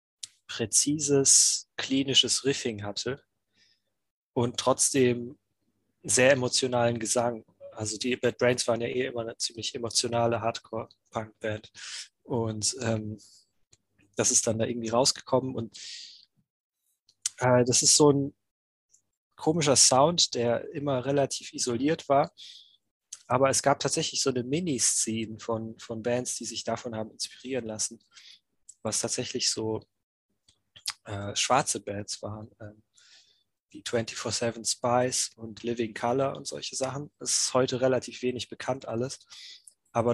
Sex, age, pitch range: male, 20-39, 110-130 Hz